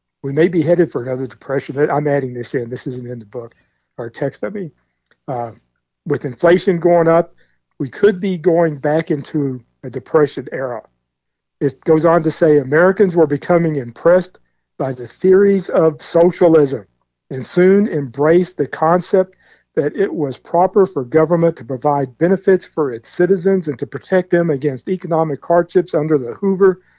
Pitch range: 135-175 Hz